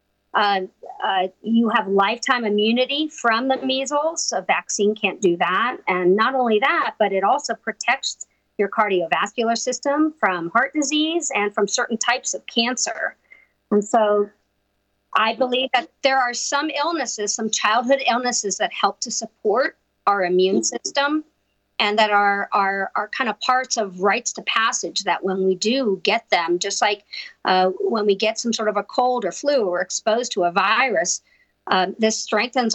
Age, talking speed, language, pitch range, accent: 50-69, 170 wpm, English, 185-240 Hz, American